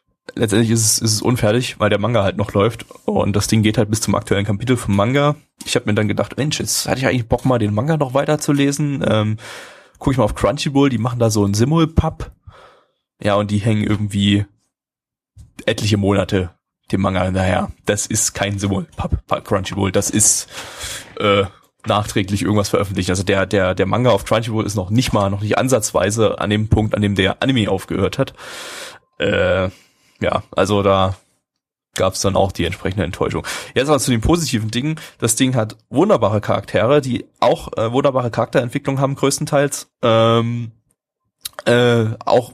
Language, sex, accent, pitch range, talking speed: German, male, German, 100-125 Hz, 180 wpm